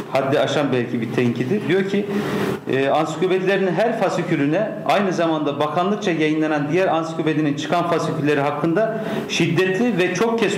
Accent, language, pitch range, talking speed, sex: native, Turkish, 140-180 Hz, 135 wpm, male